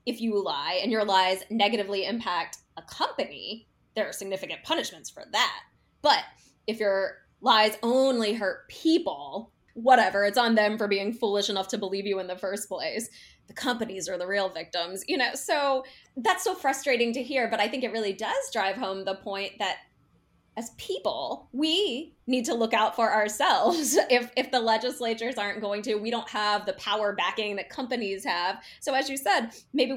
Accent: American